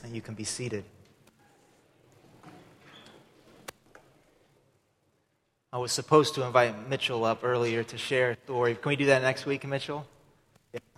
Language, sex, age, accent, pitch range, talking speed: English, male, 30-49, American, 120-150 Hz, 135 wpm